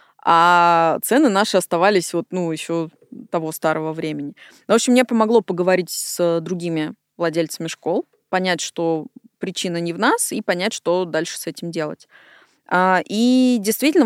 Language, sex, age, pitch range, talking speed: Russian, female, 20-39, 170-220 Hz, 150 wpm